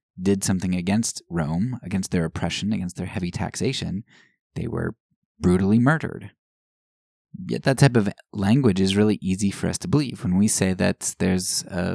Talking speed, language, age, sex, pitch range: 165 wpm, English, 20-39, male, 90-105 Hz